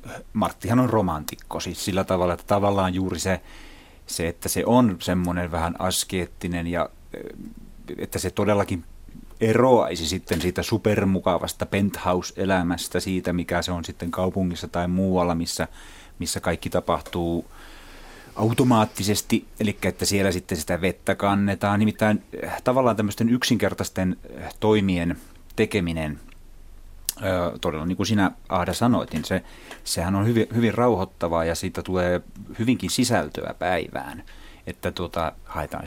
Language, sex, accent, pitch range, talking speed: Finnish, male, native, 90-110 Hz, 120 wpm